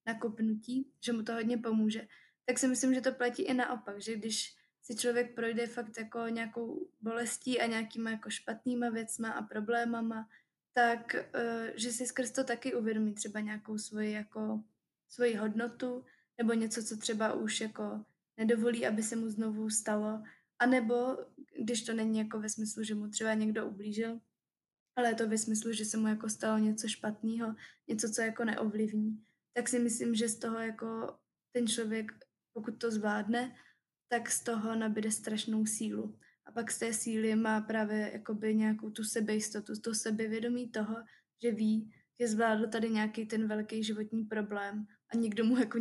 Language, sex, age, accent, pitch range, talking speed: Czech, female, 20-39, native, 215-235 Hz, 170 wpm